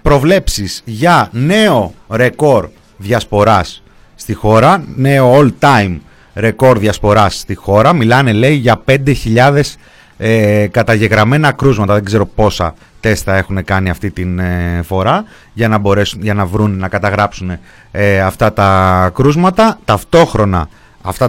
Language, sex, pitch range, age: Greek, male, 105-145 Hz, 30-49